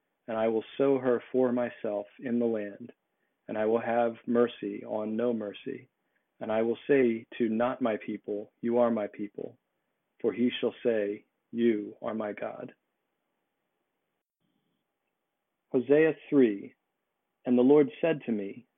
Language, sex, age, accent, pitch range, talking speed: English, male, 40-59, American, 110-130 Hz, 145 wpm